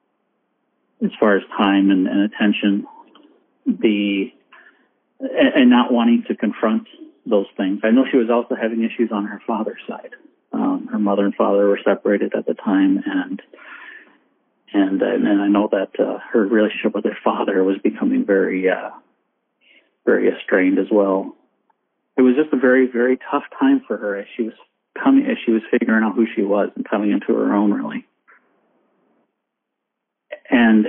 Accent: American